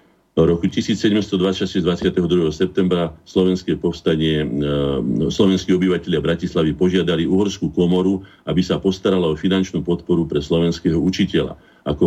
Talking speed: 120 wpm